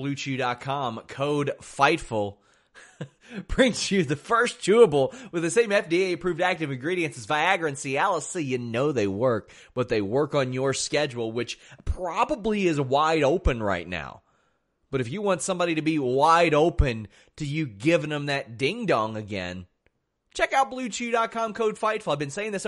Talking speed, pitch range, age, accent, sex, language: 160 wpm, 135-195 Hz, 30-49, American, male, English